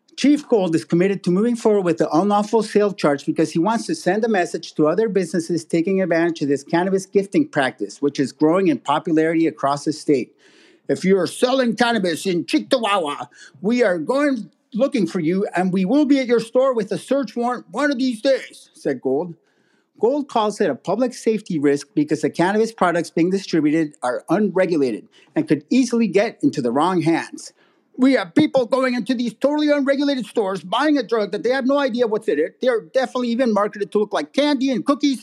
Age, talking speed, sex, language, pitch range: 50-69, 205 wpm, male, English, 185-275 Hz